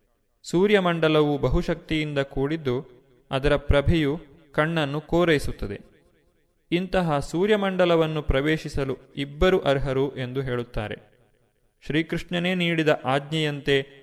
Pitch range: 130-165 Hz